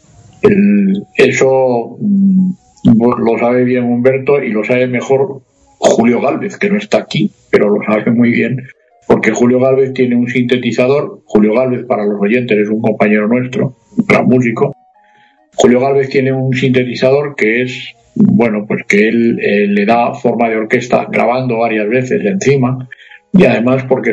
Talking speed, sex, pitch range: 160 wpm, male, 115-140 Hz